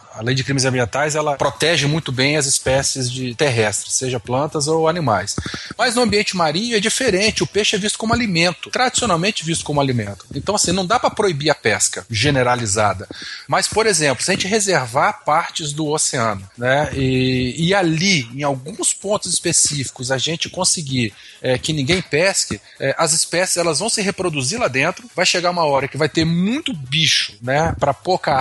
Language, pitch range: Portuguese, 135-195 Hz